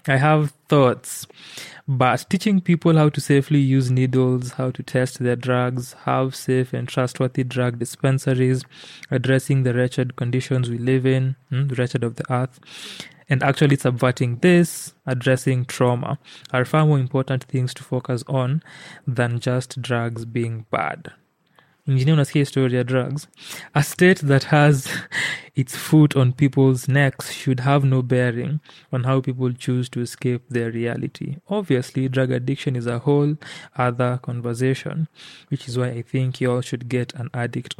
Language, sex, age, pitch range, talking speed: English, male, 20-39, 125-145 Hz, 155 wpm